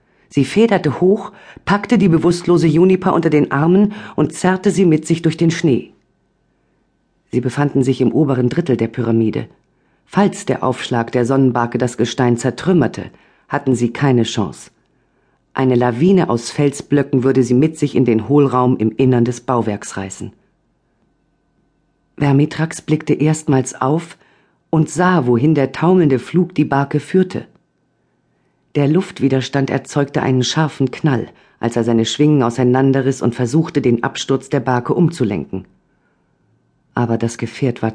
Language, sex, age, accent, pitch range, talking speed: German, female, 40-59, German, 120-165 Hz, 140 wpm